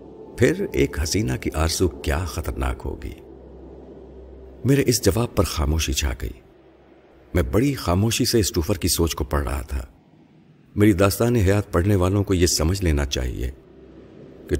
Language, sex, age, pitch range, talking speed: Urdu, male, 50-69, 75-100 Hz, 150 wpm